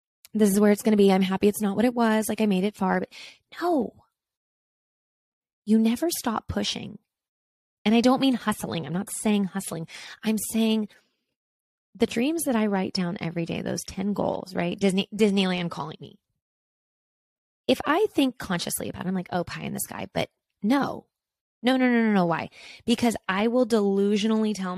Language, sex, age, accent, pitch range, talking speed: English, female, 20-39, American, 180-230 Hz, 190 wpm